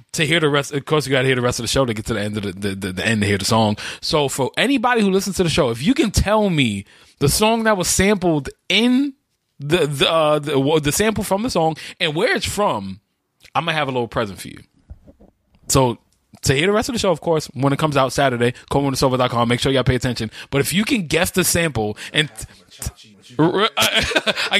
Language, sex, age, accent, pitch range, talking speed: English, male, 20-39, American, 120-185 Hz, 250 wpm